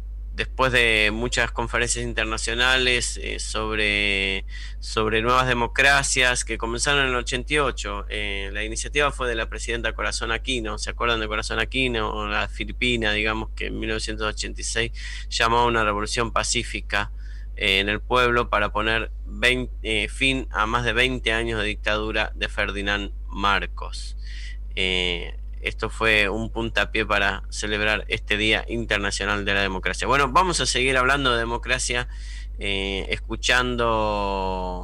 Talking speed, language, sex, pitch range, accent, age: 140 wpm, Spanish, male, 100-125 Hz, Argentinian, 20-39